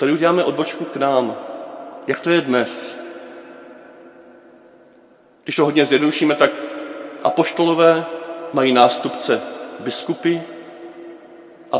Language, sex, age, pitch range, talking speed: Czech, male, 40-59, 135-175 Hz, 95 wpm